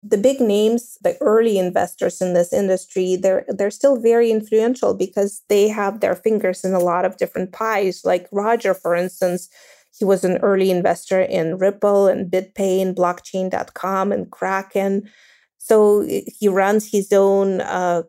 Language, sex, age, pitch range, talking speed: English, female, 30-49, 185-210 Hz, 160 wpm